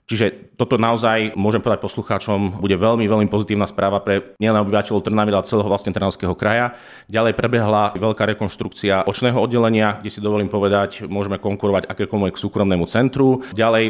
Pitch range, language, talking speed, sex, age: 95-110 Hz, Slovak, 150 wpm, male, 30-49